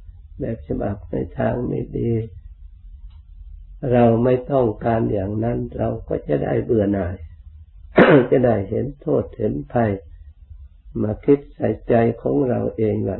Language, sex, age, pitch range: Thai, male, 60-79, 90-120 Hz